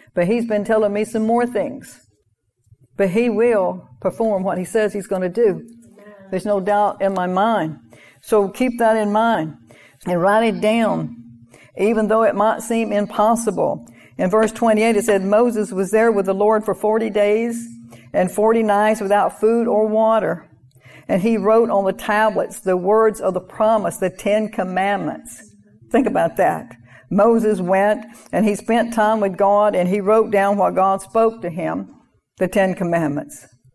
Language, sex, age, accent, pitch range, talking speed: English, female, 60-79, American, 185-220 Hz, 175 wpm